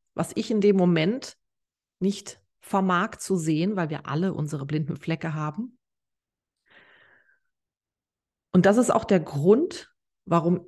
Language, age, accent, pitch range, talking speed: German, 30-49, German, 170-225 Hz, 130 wpm